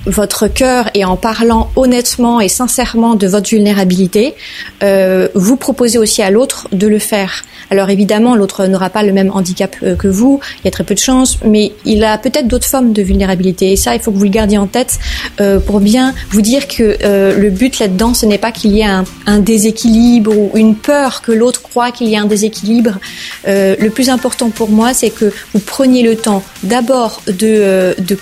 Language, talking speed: French, 215 wpm